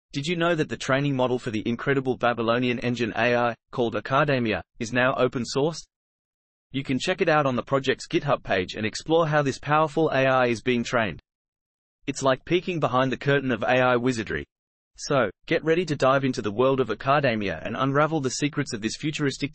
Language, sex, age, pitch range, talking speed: English, male, 30-49, 120-150 Hz, 195 wpm